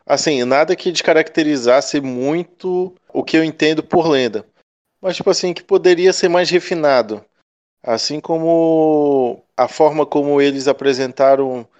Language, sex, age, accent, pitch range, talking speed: Portuguese, male, 20-39, Brazilian, 125-150 Hz, 130 wpm